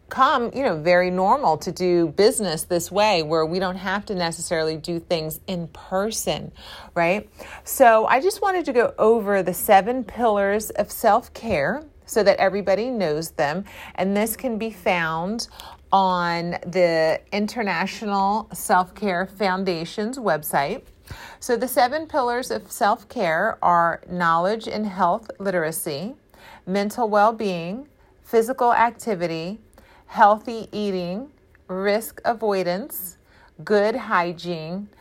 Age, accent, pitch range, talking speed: 40-59, American, 180-230 Hz, 120 wpm